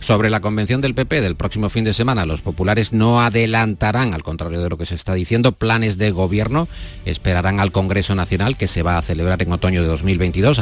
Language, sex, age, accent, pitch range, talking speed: Spanish, male, 50-69, Spanish, 90-115 Hz, 215 wpm